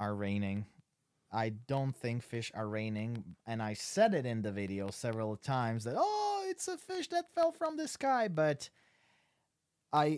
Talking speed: 170 wpm